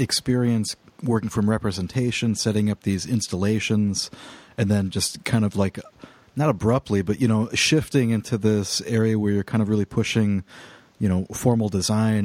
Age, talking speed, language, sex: 40-59, 160 wpm, English, male